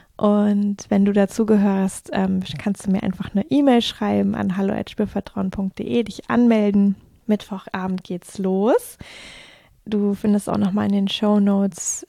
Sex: female